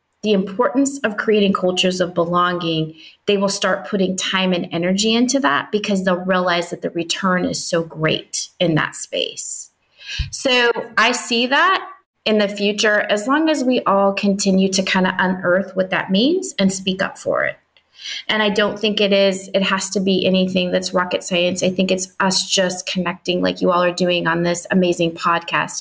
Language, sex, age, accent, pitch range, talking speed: English, female, 30-49, American, 175-205 Hz, 190 wpm